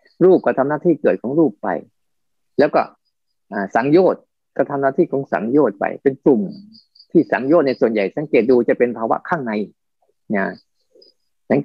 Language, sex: Thai, male